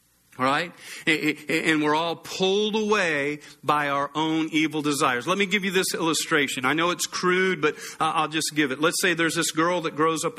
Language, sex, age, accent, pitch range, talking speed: English, male, 40-59, American, 150-180 Hz, 195 wpm